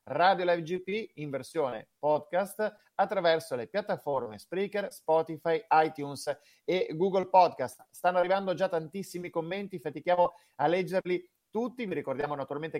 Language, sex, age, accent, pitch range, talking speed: Italian, male, 30-49, native, 150-195 Hz, 125 wpm